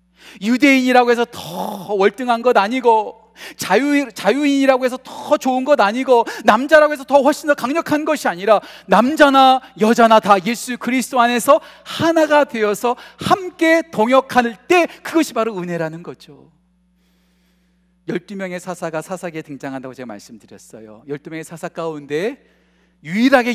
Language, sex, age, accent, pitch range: Korean, male, 40-59, native, 175-245 Hz